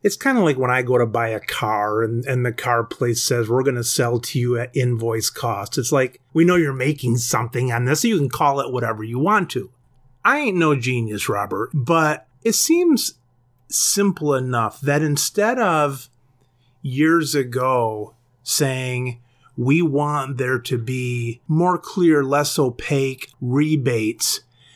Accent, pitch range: American, 120-155 Hz